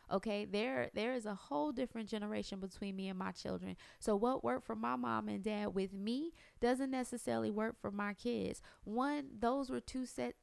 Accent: American